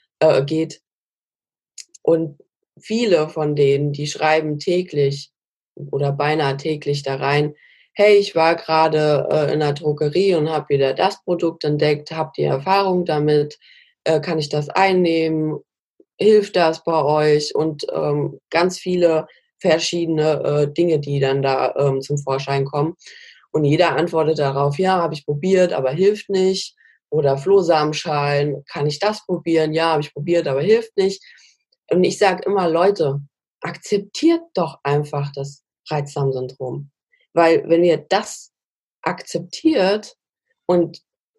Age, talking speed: 20-39, 140 wpm